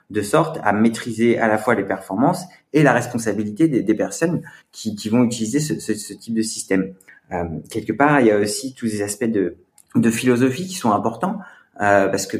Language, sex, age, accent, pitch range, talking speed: French, male, 30-49, French, 105-130 Hz, 215 wpm